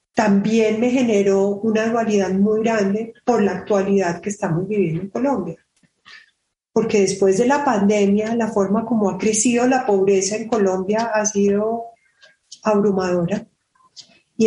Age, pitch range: 30-49, 205-240 Hz